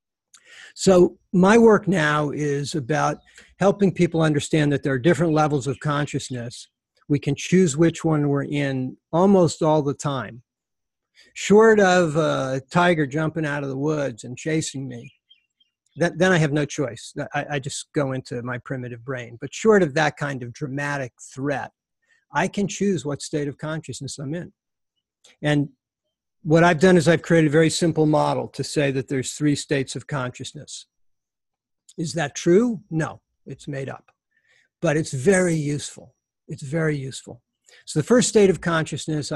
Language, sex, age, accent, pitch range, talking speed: English, male, 50-69, American, 135-170 Hz, 165 wpm